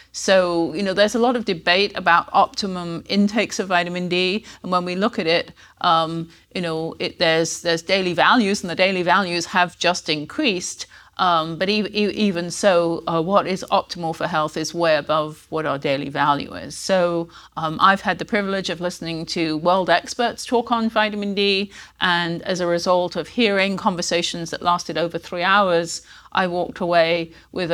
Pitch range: 170-200 Hz